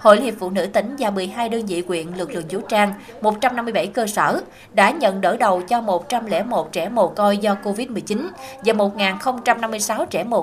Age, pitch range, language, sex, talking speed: 20-39, 190-240 Hz, Vietnamese, female, 190 wpm